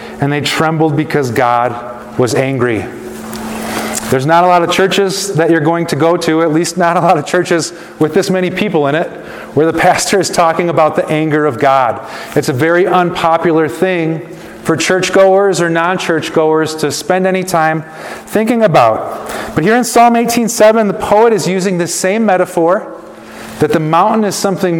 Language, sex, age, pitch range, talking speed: English, male, 30-49, 150-185 Hz, 180 wpm